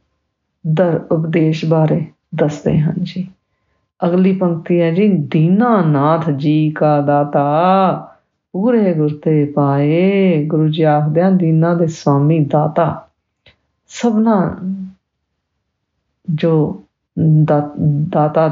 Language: English